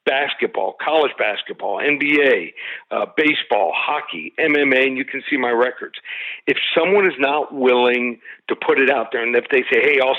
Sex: male